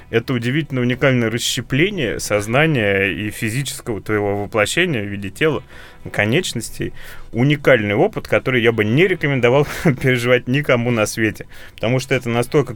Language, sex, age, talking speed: Russian, male, 20-39, 130 wpm